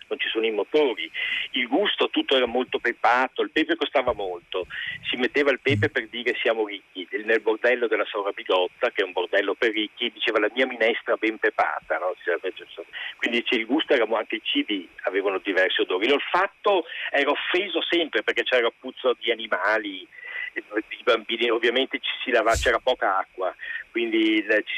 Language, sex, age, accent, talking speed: Italian, male, 50-69, native, 175 wpm